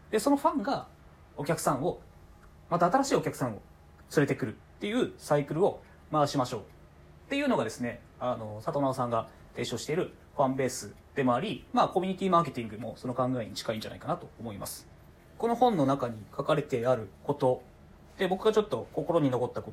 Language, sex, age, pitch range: Japanese, male, 20-39, 115-170 Hz